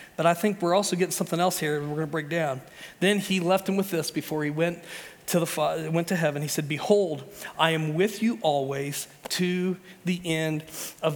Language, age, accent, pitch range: English, 40-59, American, 150-190 Hz